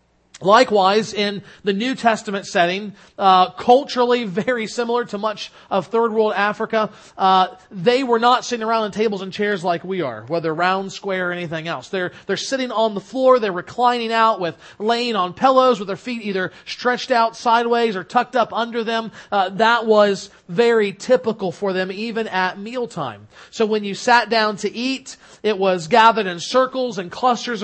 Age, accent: 40-59, American